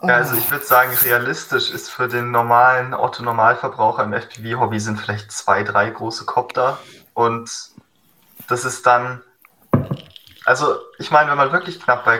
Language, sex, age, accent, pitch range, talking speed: German, male, 20-39, German, 125-160 Hz, 150 wpm